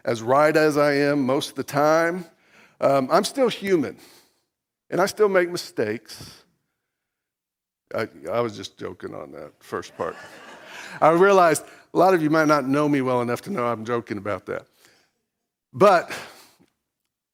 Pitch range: 140-180 Hz